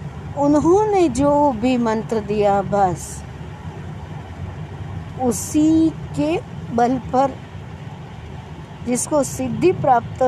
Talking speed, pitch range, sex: 75 wpm, 190-260 Hz, female